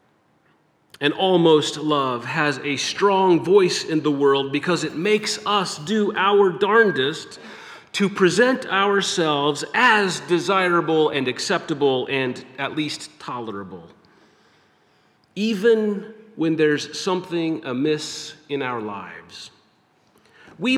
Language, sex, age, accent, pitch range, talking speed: English, male, 40-59, American, 155-205 Hz, 105 wpm